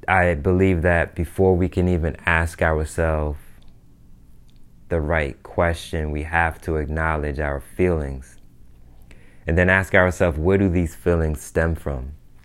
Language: English